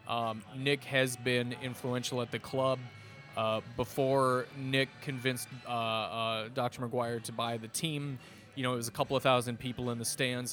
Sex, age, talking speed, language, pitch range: male, 20-39, 180 wpm, English, 120-135 Hz